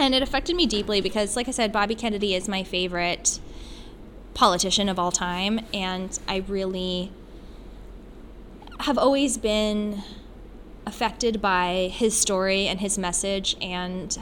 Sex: female